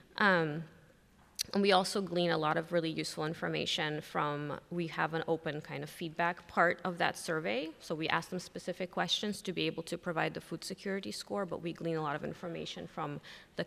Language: English